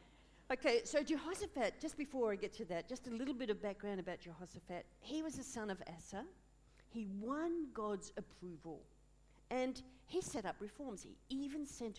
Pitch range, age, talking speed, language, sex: 170-240 Hz, 50-69, 175 wpm, English, female